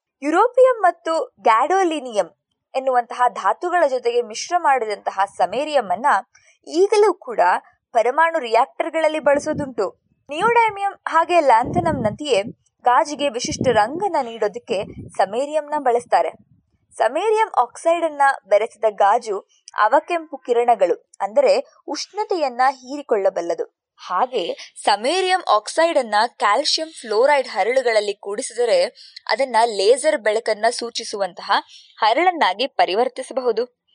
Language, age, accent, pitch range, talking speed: Kannada, 20-39, native, 245-385 Hz, 85 wpm